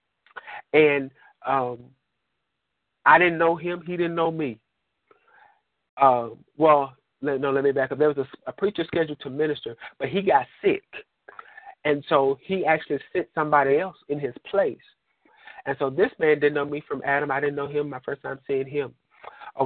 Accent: American